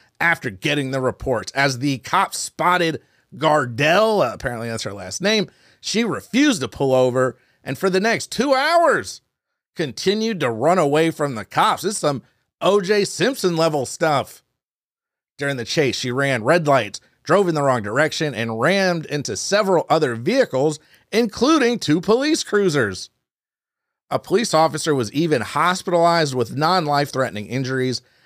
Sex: male